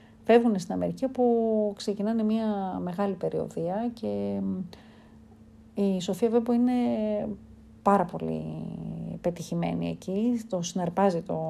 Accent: native